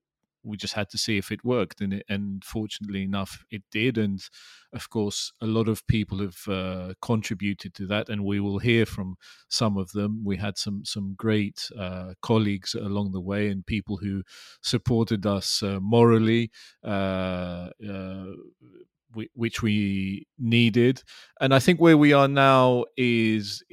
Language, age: English, 30-49